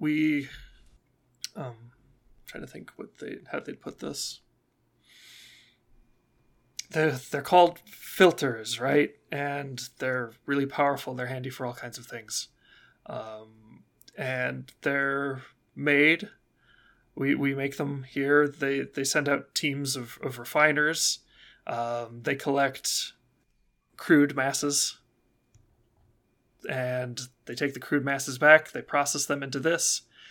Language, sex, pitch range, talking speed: English, male, 120-145 Hz, 120 wpm